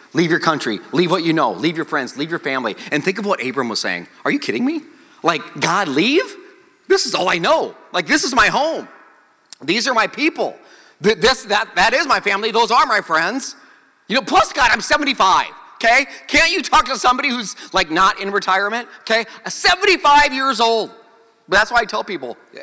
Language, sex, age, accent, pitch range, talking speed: English, male, 30-49, American, 225-320 Hz, 205 wpm